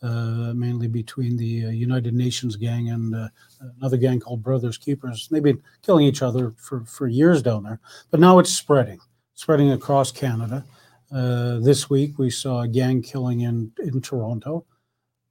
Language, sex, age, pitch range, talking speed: English, male, 50-69, 120-140 Hz, 175 wpm